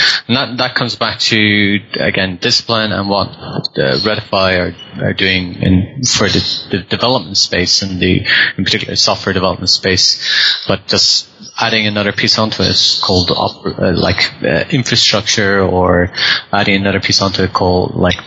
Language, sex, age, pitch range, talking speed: English, male, 30-49, 95-110 Hz, 160 wpm